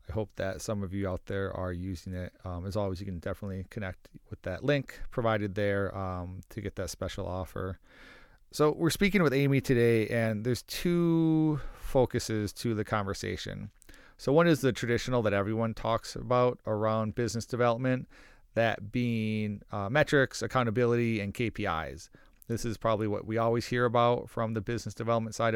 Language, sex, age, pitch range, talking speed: English, male, 40-59, 100-120 Hz, 175 wpm